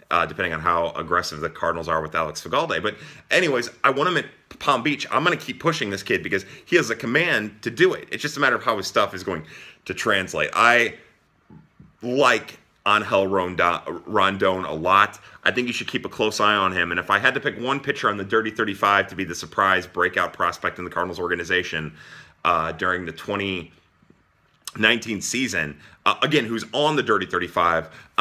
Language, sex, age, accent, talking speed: English, male, 30-49, American, 205 wpm